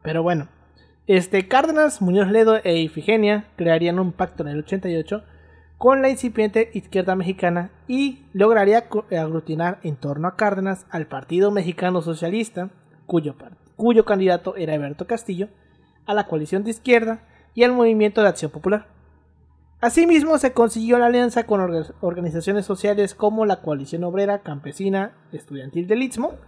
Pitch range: 160-215 Hz